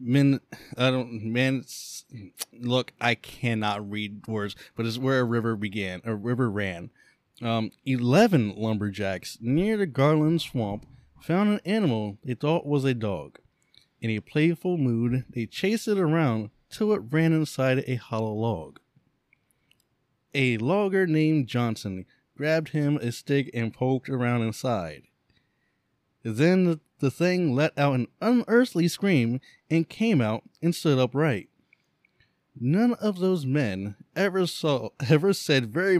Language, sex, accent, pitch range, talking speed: English, male, American, 115-160 Hz, 140 wpm